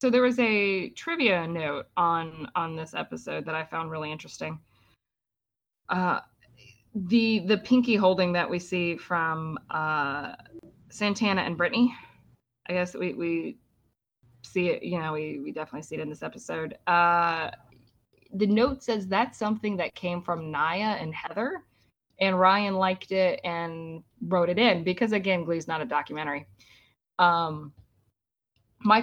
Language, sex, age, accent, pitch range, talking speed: English, female, 20-39, American, 160-210 Hz, 150 wpm